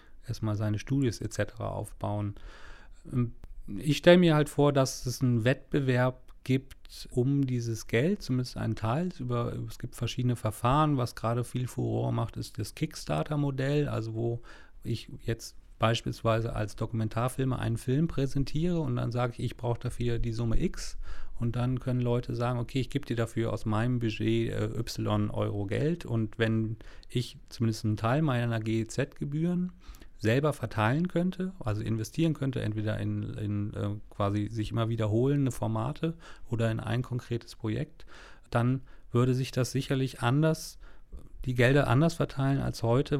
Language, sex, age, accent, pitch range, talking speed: English, male, 40-59, German, 110-130 Hz, 155 wpm